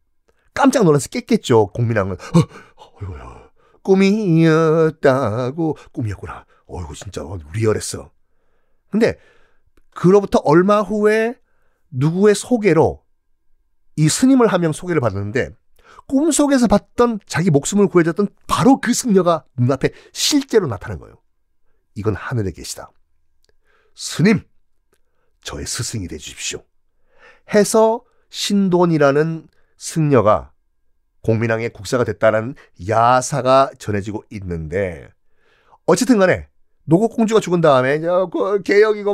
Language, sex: Korean, male